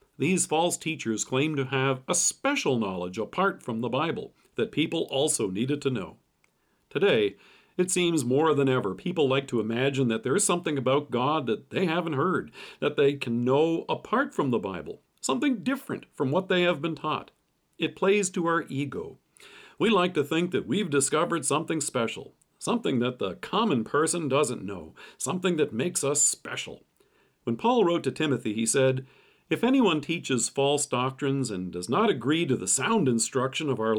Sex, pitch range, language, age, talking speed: male, 125-170 Hz, English, 50-69, 180 wpm